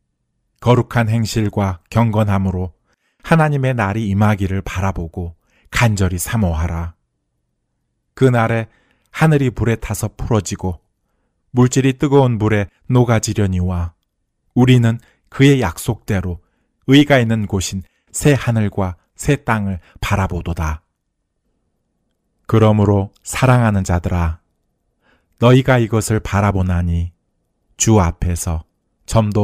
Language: Korean